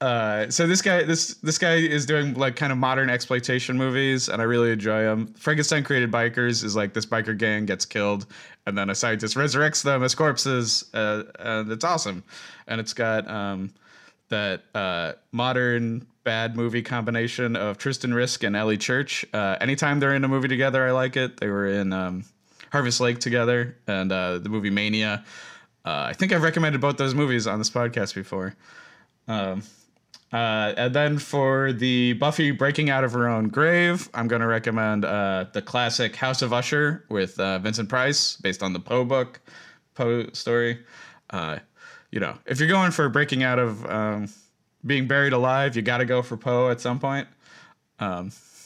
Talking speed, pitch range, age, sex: 185 wpm, 110-140 Hz, 20-39, male